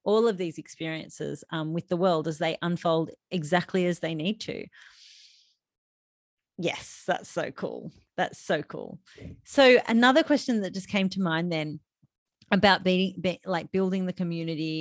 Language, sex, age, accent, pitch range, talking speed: English, female, 30-49, Australian, 160-195 Hz, 155 wpm